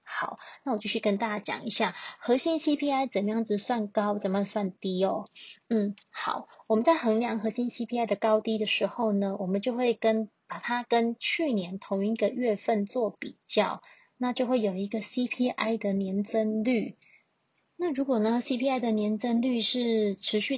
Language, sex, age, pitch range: Chinese, female, 20-39, 205-245 Hz